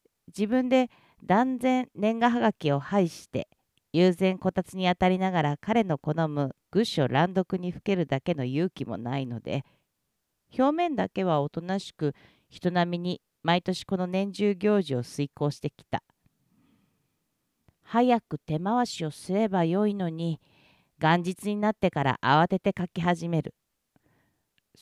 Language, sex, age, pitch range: Japanese, female, 40-59, 150-210 Hz